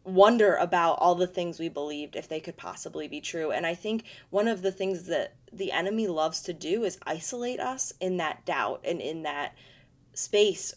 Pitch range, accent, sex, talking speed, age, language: 160-195 Hz, American, female, 200 wpm, 20-39, English